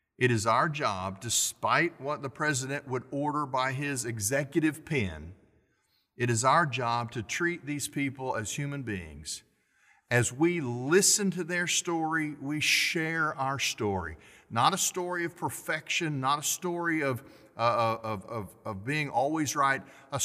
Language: English